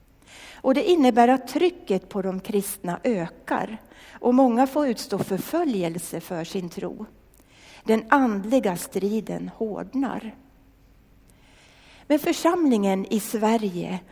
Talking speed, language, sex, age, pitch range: 105 wpm, Swedish, female, 60-79, 200-270 Hz